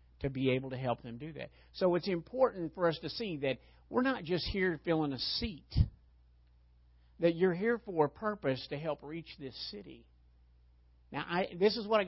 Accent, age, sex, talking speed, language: American, 50-69, male, 200 wpm, English